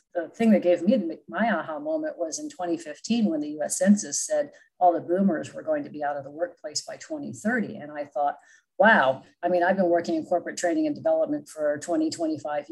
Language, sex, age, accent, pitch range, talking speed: English, female, 50-69, American, 175-250 Hz, 215 wpm